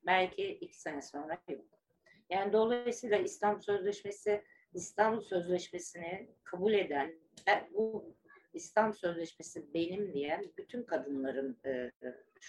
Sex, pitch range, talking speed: female, 155-205 Hz, 100 wpm